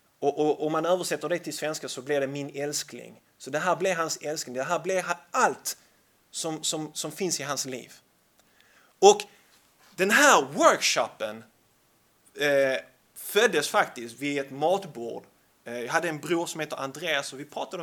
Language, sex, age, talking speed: Swedish, male, 30-49, 160 wpm